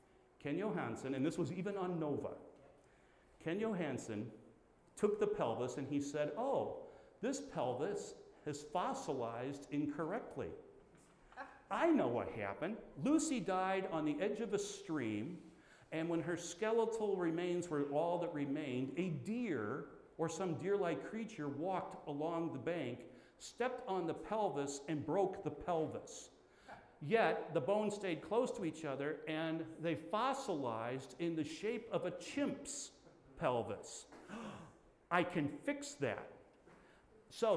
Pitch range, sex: 150-215 Hz, male